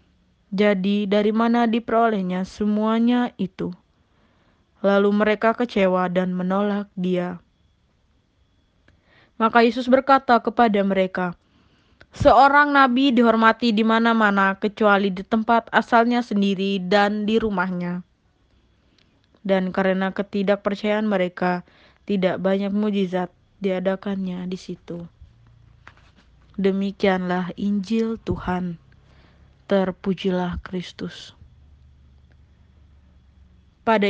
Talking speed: 80 wpm